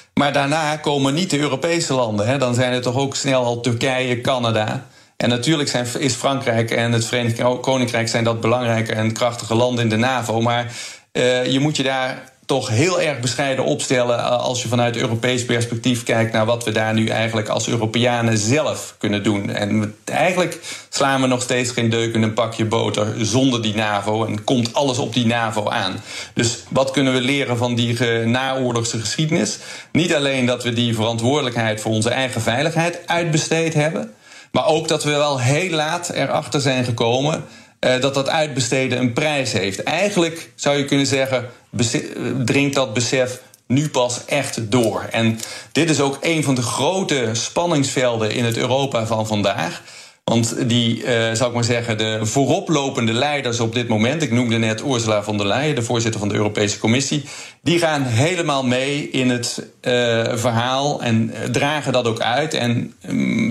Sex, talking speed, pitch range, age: male, 175 wpm, 115-140 Hz, 40-59